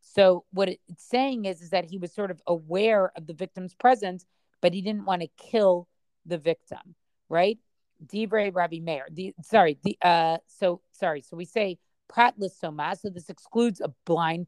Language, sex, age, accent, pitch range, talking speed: English, female, 40-59, American, 175-215 Hz, 180 wpm